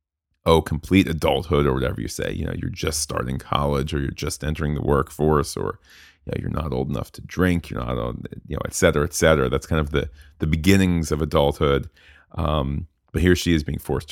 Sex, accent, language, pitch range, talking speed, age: male, American, English, 75-85 Hz, 220 wpm, 30-49